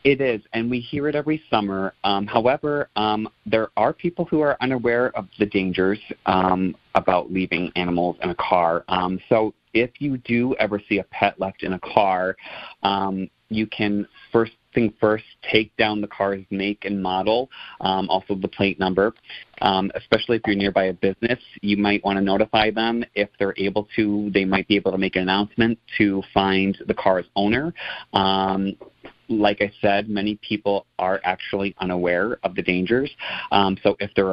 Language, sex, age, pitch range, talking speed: English, male, 30-49, 95-110 Hz, 180 wpm